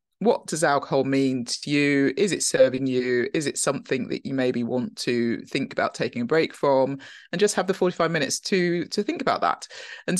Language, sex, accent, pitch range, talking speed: English, female, British, 140-205 Hz, 210 wpm